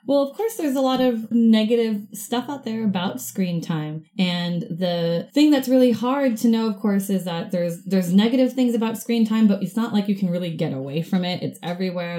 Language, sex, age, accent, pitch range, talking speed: English, female, 20-39, American, 160-210 Hz, 225 wpm